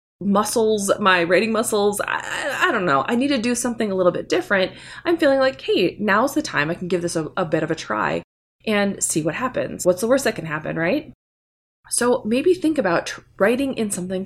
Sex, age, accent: female, 20-39, American